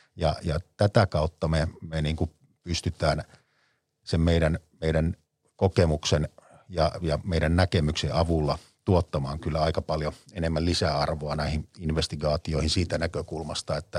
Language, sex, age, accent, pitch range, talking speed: Finnish, male, 50-69, native, 75-90 Hz, 125 wpm